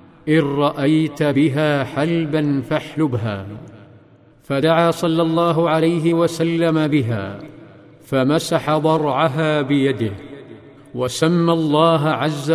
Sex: male